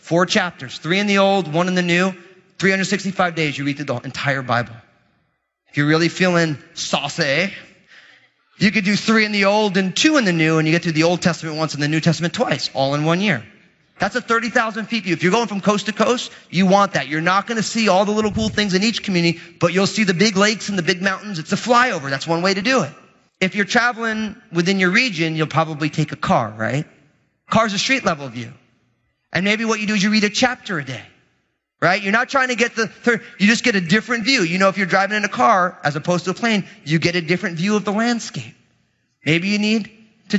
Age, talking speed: 30-49, 250 wpm